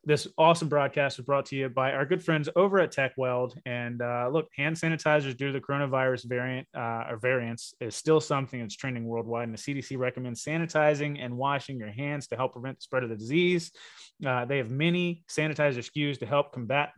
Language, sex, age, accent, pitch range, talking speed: English, male, 30-49, American, 120-145 Hz, 210 wpm